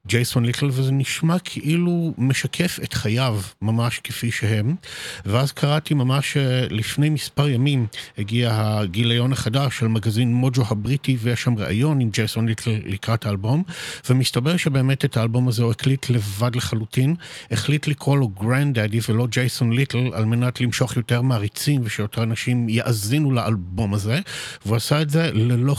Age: 50-69